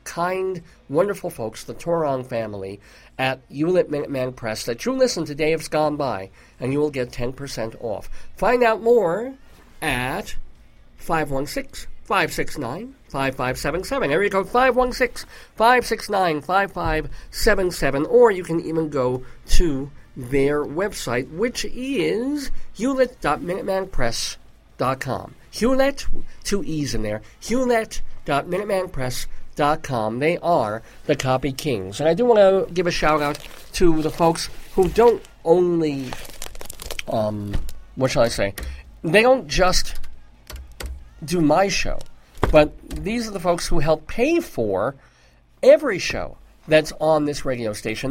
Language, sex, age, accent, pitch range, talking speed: English, male, 50-69, American, 125-190 Hz, 150 wpm